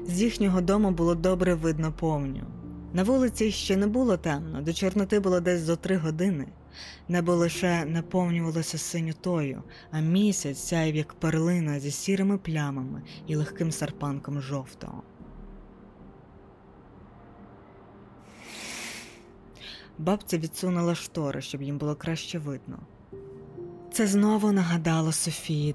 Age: 20-39